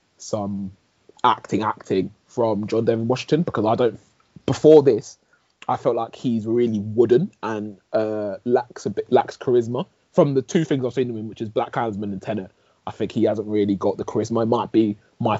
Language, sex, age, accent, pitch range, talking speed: English, male, 20-39, British, 100-115 Hz, 200 wpm